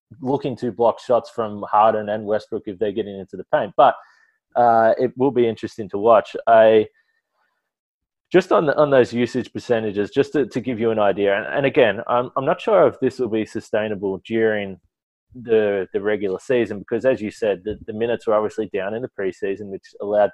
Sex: male